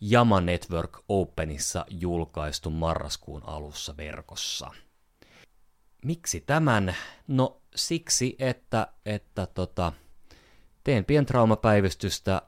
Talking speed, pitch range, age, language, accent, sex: 75 wpm, 75-110 Hz, 30-49, Finnish, native, male